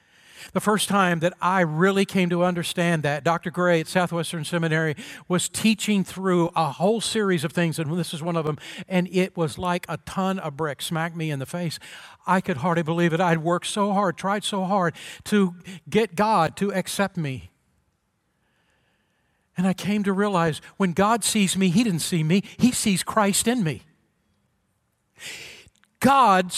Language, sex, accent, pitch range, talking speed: English, male, American, 170-200 Hz, 180 wpm